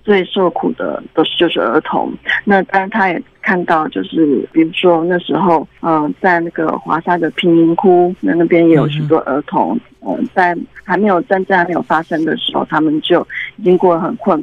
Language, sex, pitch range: Chinese, female, 165-205 Hz